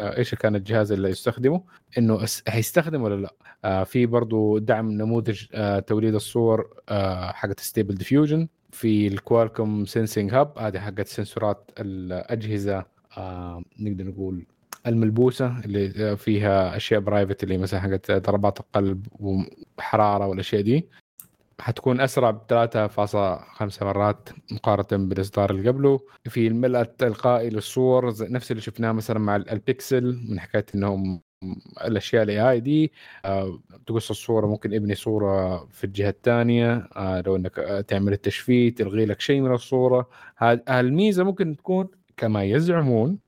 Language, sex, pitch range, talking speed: Arabic, male, 100-125 Hz, 130 wpm